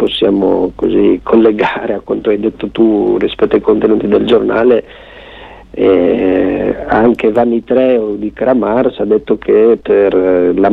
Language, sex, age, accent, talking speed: Italian, male, 40-59, native, 130 wpm